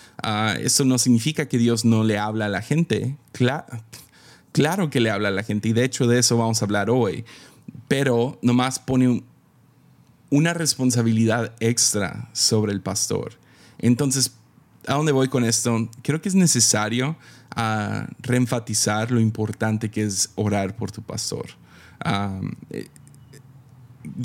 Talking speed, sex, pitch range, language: 150 wpm, male, 110-135 Hz, Spanish